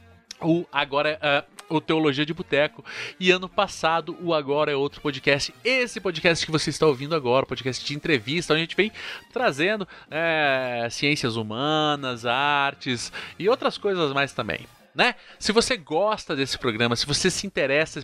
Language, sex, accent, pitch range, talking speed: Portuguese, male, Brazilian, 125-185 Hz, 165 wpm